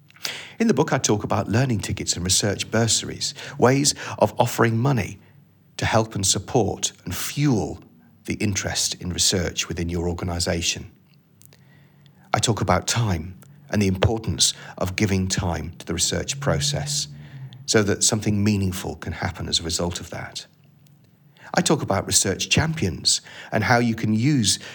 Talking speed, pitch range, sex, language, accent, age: 155 wpm, 95-125 Hz, male, English, British, 40-59